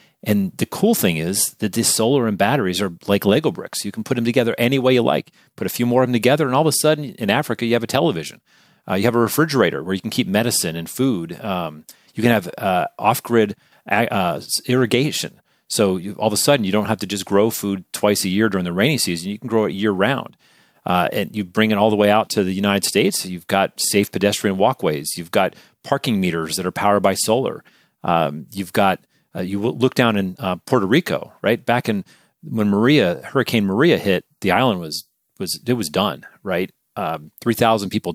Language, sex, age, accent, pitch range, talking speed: English, male, 40-59, American, 95-120 Hz, 225 wpm